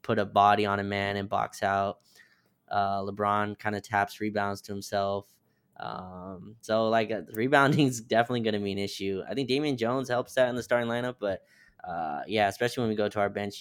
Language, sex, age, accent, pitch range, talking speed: English, male, 10-29, American, 100-110 Hz, 210 wpm